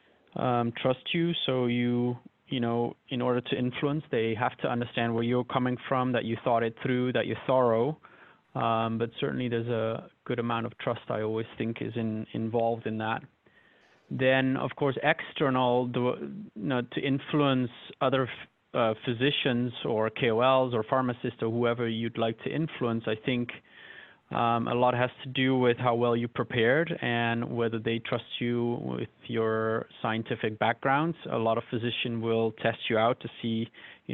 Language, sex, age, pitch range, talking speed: English, male, 20-39, 115-130 Hz, 170 wpm